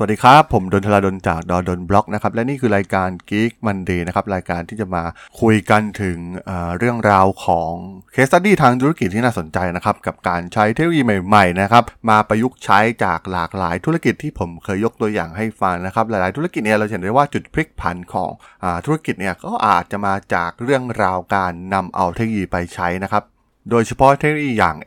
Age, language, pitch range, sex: 20-39, Thai, 95-120 Hz, male